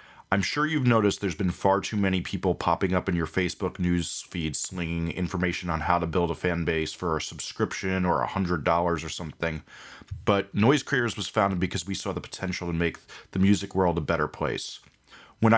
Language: English